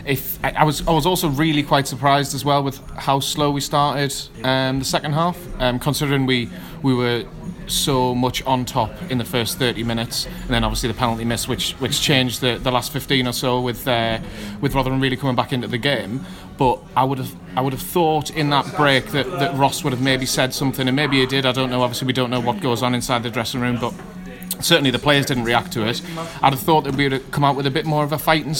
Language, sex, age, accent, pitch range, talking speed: English, male, 30-49, British, 125-145 Hz, 250 wpm